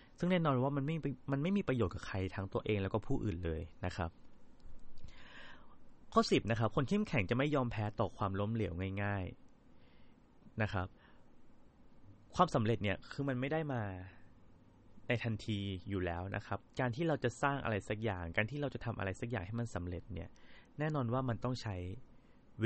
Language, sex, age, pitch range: Thai, male, 20-39, 95-125 Hz